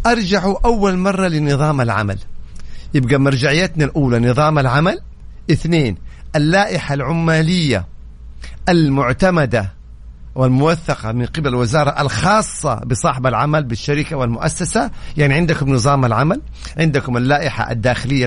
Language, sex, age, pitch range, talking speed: English, male, 50-69, 130-185 Hz, 100 wpm